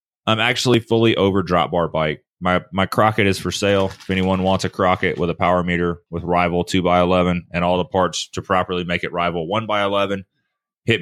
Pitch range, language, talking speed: 90-110 Hz, English, 220 wpm